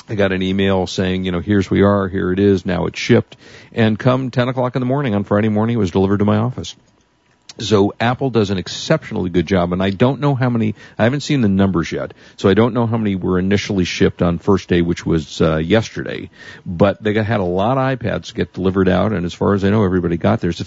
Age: 50-69